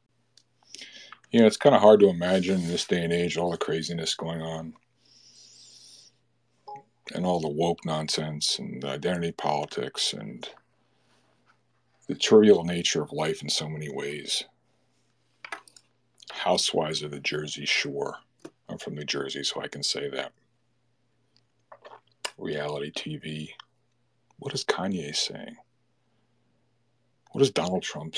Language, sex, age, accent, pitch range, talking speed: English, male, 50-69, American, 75-105 Hz, 130 wpm